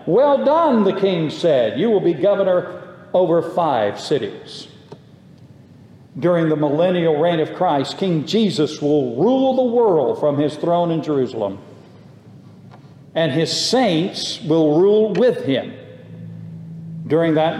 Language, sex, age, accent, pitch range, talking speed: English, male, 60-79, American, 150-190 Hz, 130 wpm